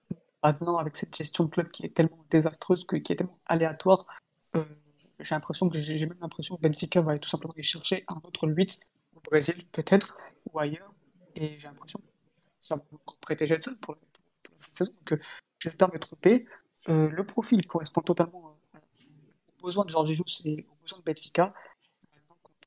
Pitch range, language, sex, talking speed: 155-180 Hz, French, female, 205 wpm